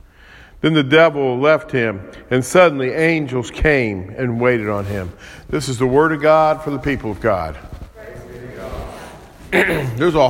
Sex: male